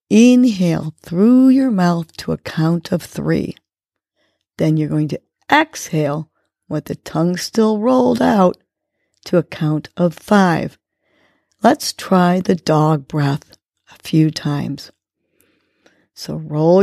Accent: American